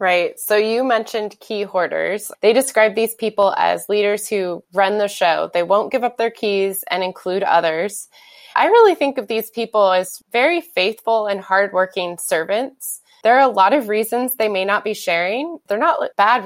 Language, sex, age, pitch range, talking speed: English, female, 20-39, 185-235 Hz, 185 wpm